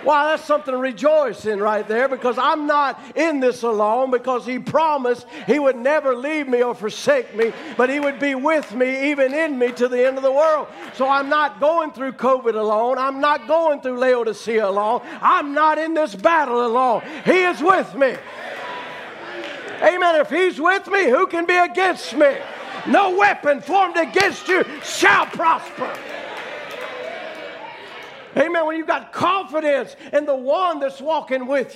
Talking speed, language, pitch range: 170 wpm, English, 265-335 Hz